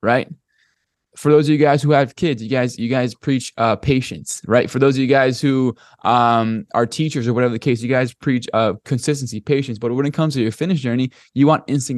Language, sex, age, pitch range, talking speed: English, male, 20-39, 115-145 Hz, 235 wpm